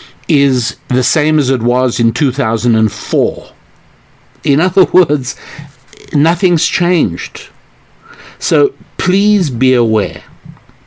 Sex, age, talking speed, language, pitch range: male, 60-79, 95 wpm, English, 115-145 Hz